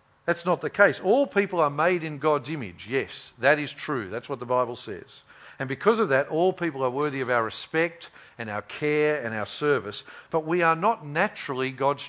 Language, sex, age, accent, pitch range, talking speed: English, male, 50-69, Australian, 140-185 Hz, 215 wpm